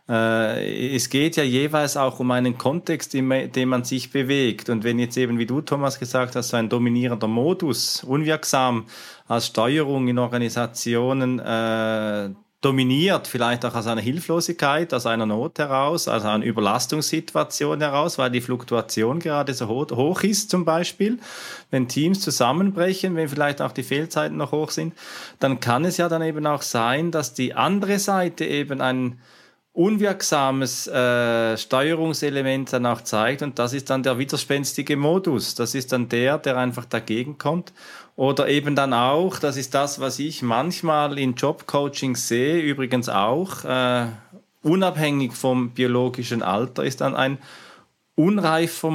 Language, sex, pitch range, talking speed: German, male, 125-150 Hz, 155 wpm